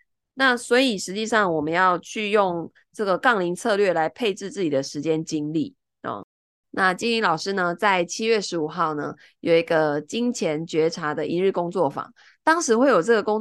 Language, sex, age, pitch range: Chinese, female, 20-39, 165-220 Hz